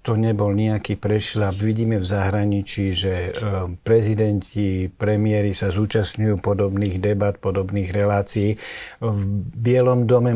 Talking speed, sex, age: 110 wpm, male, 60-79